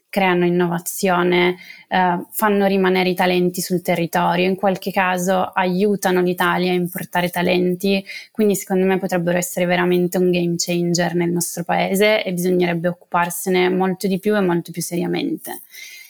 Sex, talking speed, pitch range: female, 140 wpm, 175-190 Hz